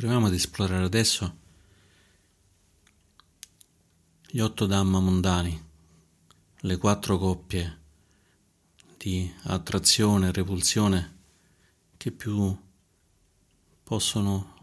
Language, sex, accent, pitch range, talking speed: Italian, male, native, 85-100 Hz, 75 wpm